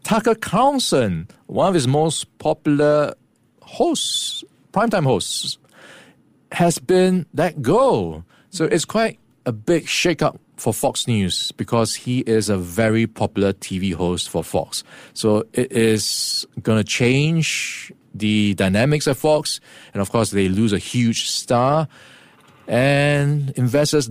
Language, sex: English, male